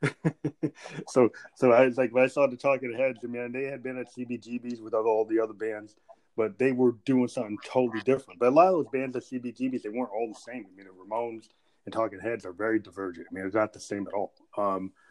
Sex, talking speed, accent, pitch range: male, 245 wpm, American, 110-125 Hz